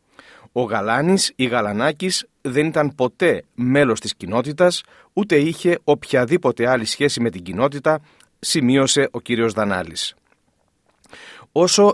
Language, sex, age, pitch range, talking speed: Greek, male, 40-59, 120-165 Hz, 115 wpm